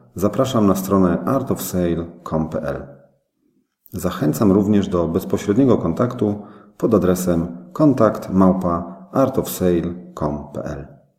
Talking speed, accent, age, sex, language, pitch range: 65 wpm, native, 40-59, male, Polish, 80-95 Hz